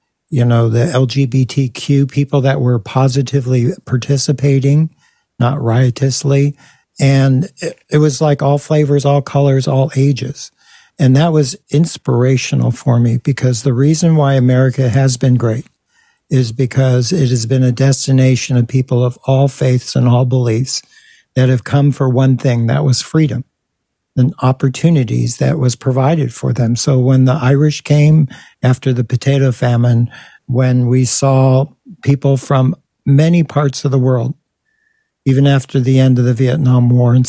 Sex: male